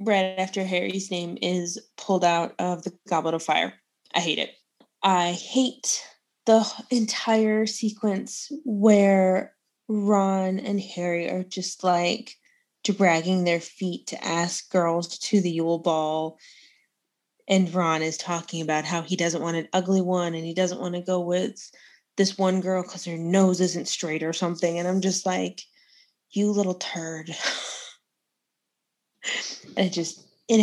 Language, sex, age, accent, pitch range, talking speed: English, female, 20-39, American, 170-205 Hz, 150 wpm